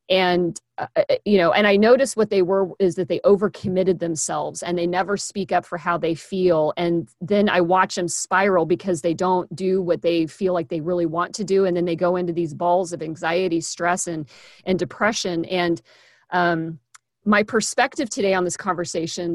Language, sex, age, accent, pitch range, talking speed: English, female, 40-59, American, 165-185 Hz, 200 wpm